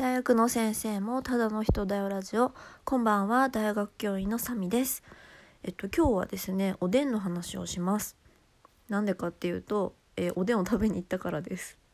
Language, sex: Japanese, female